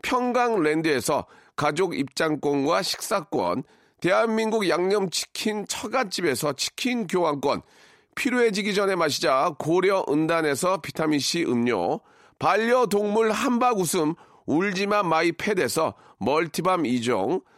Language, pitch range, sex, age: Korean, 170-225 Hz, male, 40-59